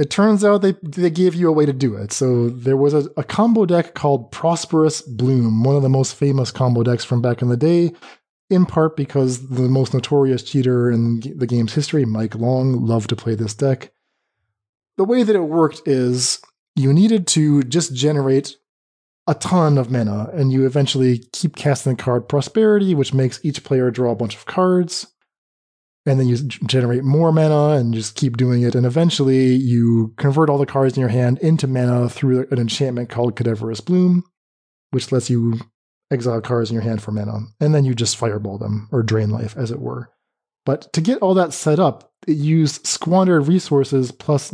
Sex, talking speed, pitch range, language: male, 200 wpm, 120-155 Hz, English